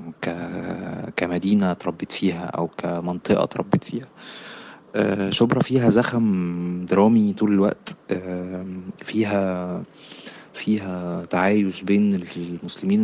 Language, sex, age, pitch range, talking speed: Arabic, male, 20-39, 90-100 Hz, 85 wpm